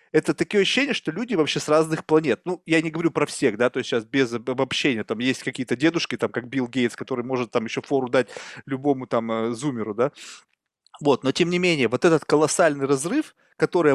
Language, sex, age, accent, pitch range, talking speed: Russian, male, 20-39, native, 130-160 Hz, 210 wpm